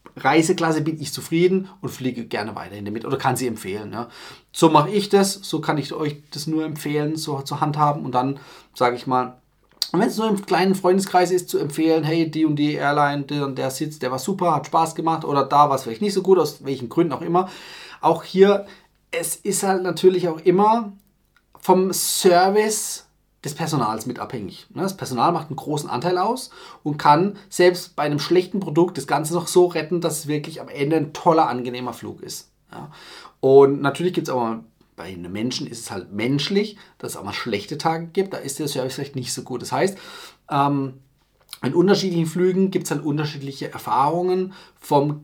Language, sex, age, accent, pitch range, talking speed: German, male, 30-49, German, 140-180 Hz, 205 wpm